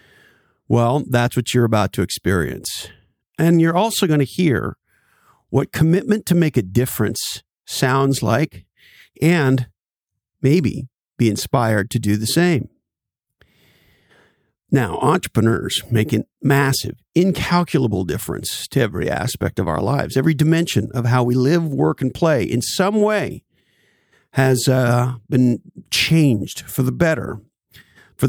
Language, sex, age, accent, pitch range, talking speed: English, male, 50-69, American, 115-155 Hz, 130 wpm